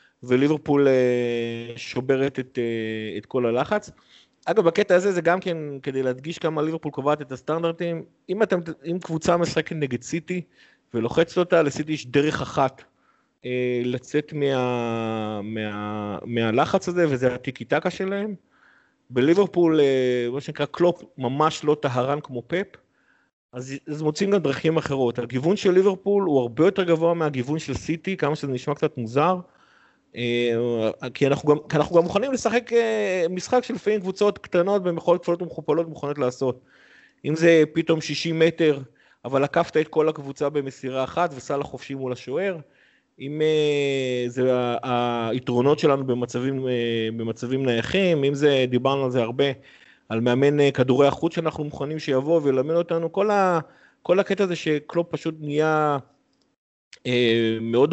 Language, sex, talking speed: Hebrew, male, 145 wpm